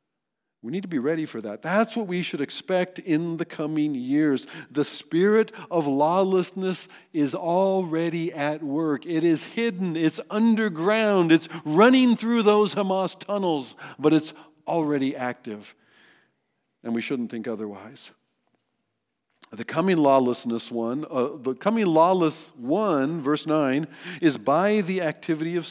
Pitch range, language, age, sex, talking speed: 135-180 Hz, English, 50-69, male, 140 wpm